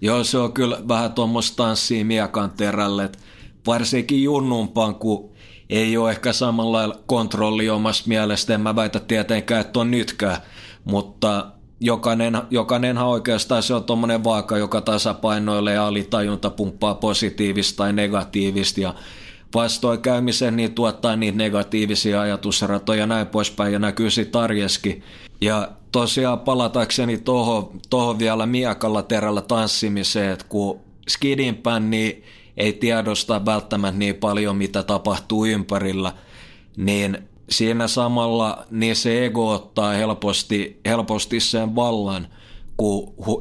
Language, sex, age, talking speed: Finnish, male, 30-49, 120 wpm